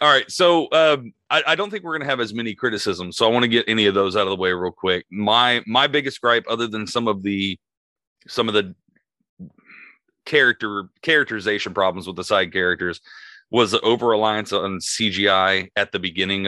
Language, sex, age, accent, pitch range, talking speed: English, male, 30-49, American, 95-110 Hz, 205 wpm